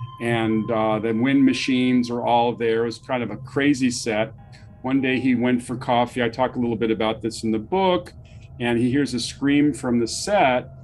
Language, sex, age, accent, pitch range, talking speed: English, male, 40-59, American, 115-130 Hz, 215 wpm